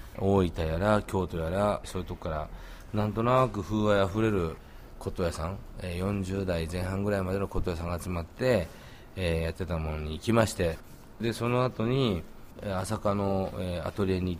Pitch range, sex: 85-110 Hz, male